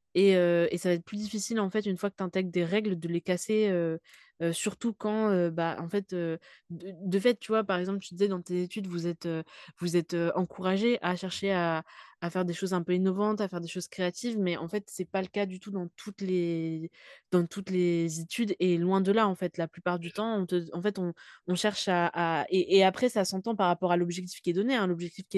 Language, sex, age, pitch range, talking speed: French, female, 20-39, 170-200 Hz, 270 wpm